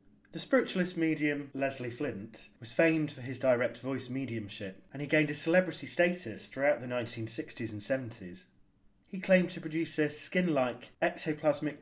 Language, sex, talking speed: English, male, 150 wpm